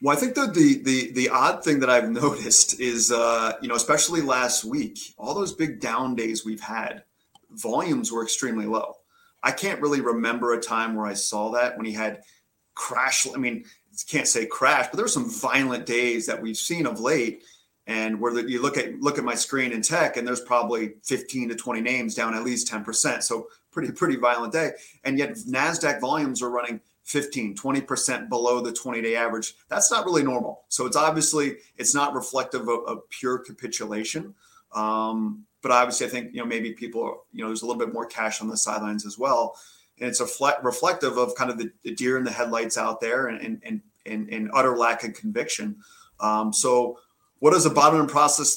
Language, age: English, 30-49